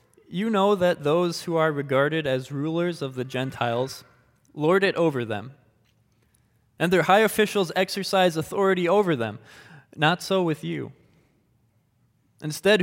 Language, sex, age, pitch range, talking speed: English, male, 20-39, 130-175 Hz, 135 wpm